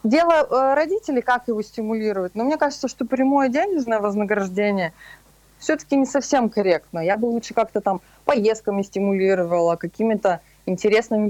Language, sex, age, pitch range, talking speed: Russian, female, 20-39, 180-260 Hz, 135 wpm